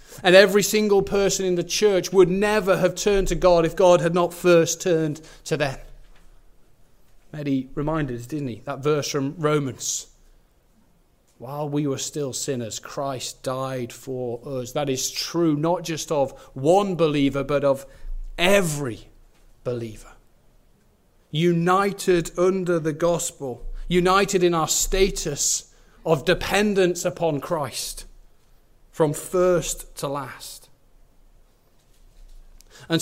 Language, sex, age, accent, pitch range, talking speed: English, male, 30-49, British, 140-180 Hz, 125 wpm